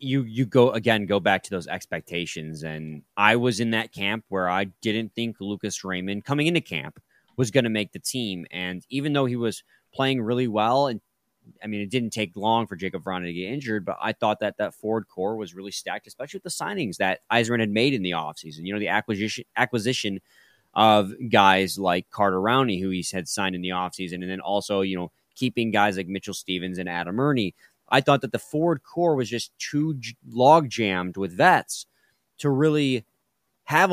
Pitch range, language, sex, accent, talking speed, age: 95-125 Hz, English, male, American, 210 wpm, 20-39